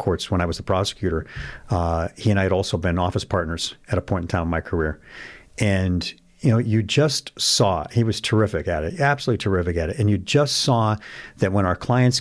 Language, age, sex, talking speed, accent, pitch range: English, 50-69, male, 225 wpm, American, 95-120 Hz